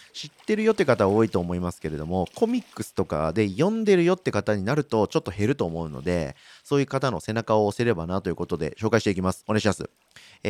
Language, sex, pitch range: Japanese, male, 90-145 Hz